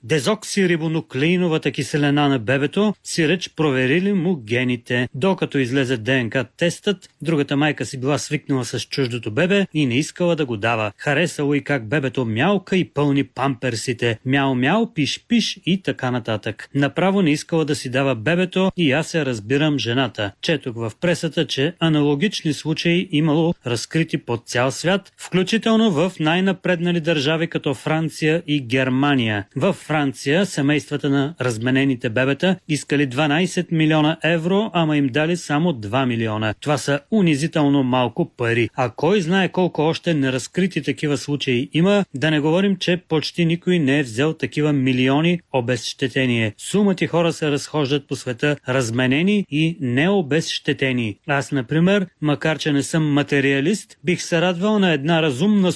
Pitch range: 135-170 Hz